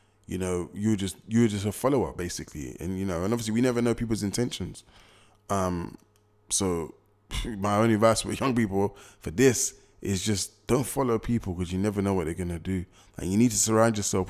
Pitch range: 95-115 Hz